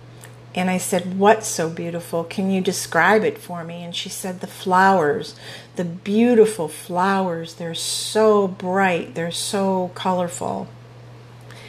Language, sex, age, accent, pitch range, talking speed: English, female, 50-69, American, 120-185 Hz, 135 wpm